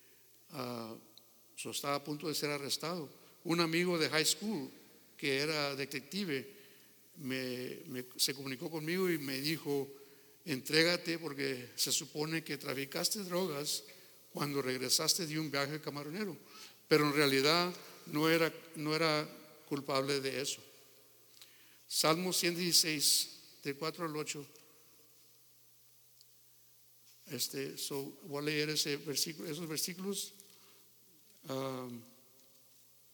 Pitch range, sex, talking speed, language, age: 135-160 Hz, male, 115 wpm, English, 60-79